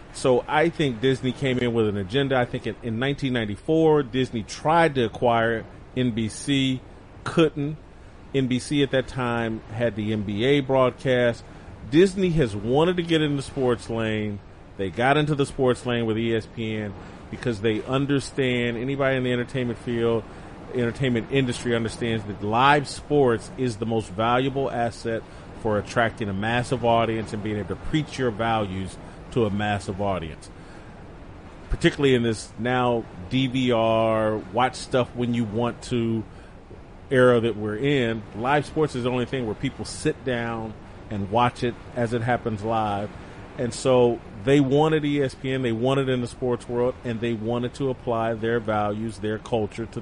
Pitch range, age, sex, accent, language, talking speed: 110-130 Hz, 40-59, male, American, English, 160 wpm